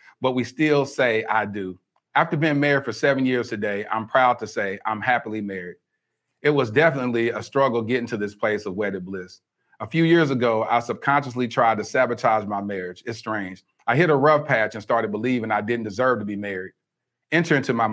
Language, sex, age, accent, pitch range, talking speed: English, male, 40-59, American, 105-130 Hz, 210 wpm